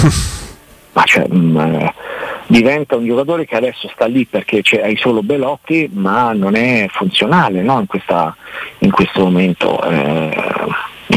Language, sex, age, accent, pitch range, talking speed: Italian, male, 50-69, native, 95-130 Hz, 140 wpm